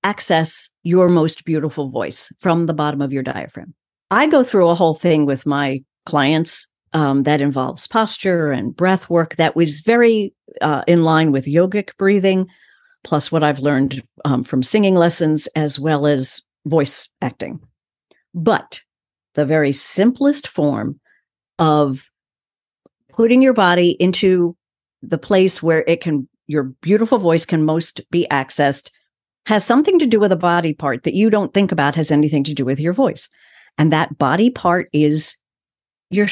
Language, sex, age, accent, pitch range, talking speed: English, female, 50-69, American, 145-190 Hz, 160 wpm